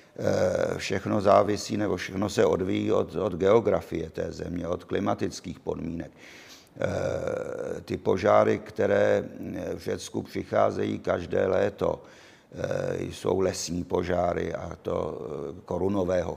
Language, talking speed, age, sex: Czech, 105 wpm, 50-69, male